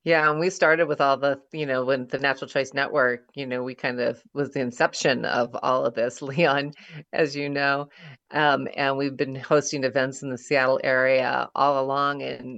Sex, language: female, English